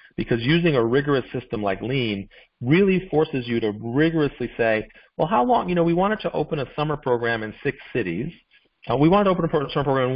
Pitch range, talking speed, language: 115-150 Hz, 215 wpm, English